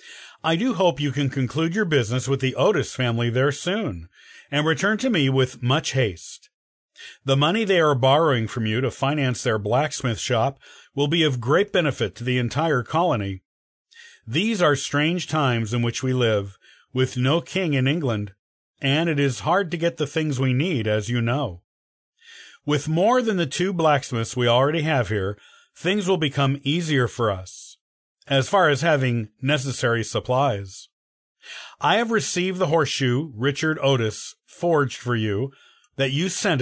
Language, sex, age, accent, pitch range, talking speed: English, male, 50-69, American, 120-160 Hz, 170 wpm